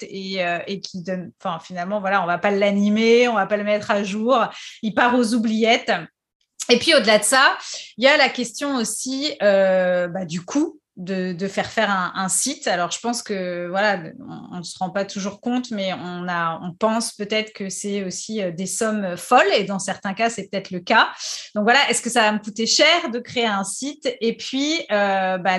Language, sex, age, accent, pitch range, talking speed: French, female, 30-49, French, 190-240 Hz, 230 wpm